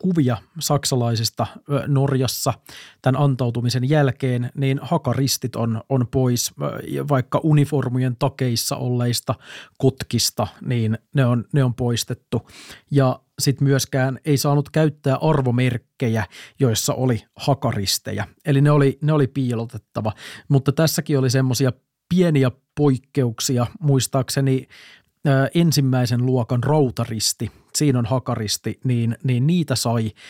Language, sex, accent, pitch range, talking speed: Finnish, male, native, 120-140 Hz, 110 wpm